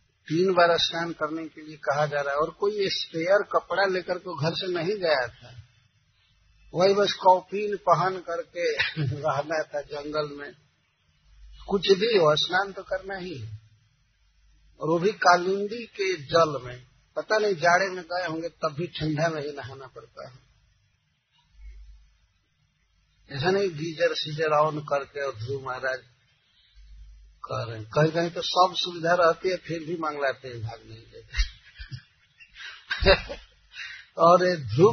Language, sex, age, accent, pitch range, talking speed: Hindi, male, 50-69, native, 135-190 Hz, 145 wpm